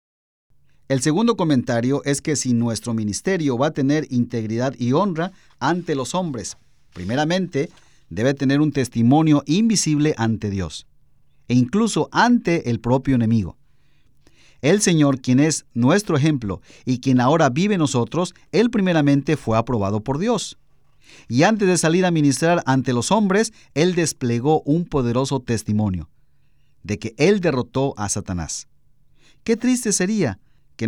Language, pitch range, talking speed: Spanish, 115-160 Hz, 140 wpm